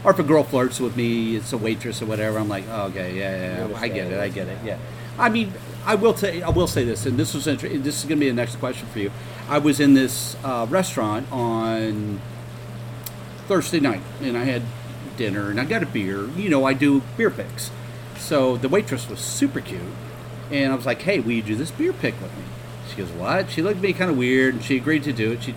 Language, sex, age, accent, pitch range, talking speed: English, male, 40-59, American, 115-145 Hz, 240 wpm